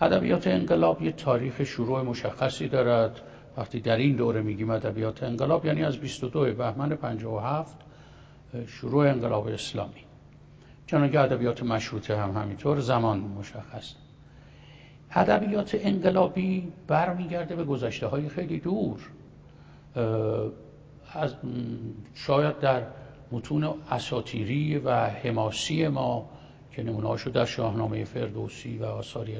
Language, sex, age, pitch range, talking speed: English, male, 60-79, 115-145 Hz, 105 wpm